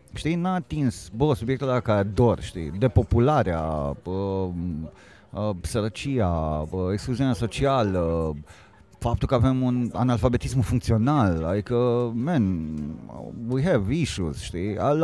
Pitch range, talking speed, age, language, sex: 100-135 Hz, 110 wpm, 30-49, Romanian, male